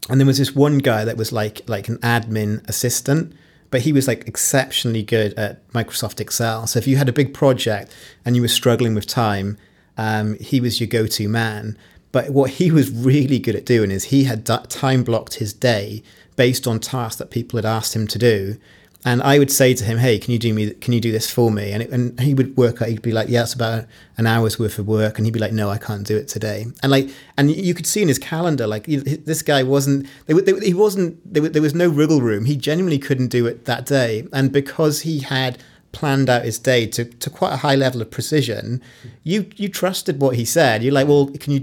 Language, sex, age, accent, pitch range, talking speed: English, male, 30-49, British, 115-140 Hz, 240 wpm